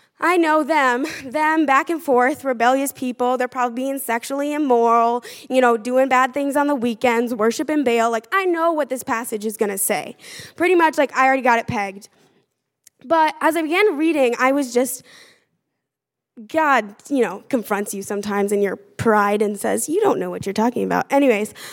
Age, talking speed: 10-29, 190 wpm